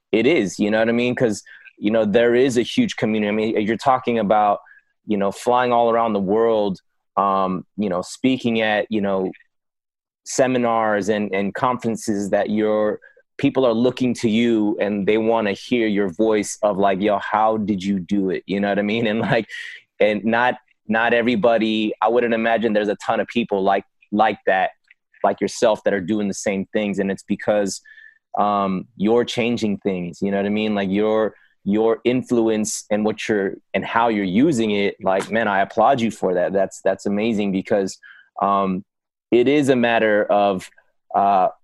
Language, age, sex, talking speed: English, 20-39, male, 190 wpm